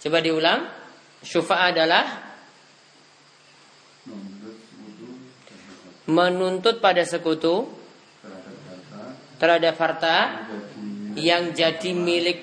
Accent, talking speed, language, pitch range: Indonesian, 60 wpm, English, 150-185 Hz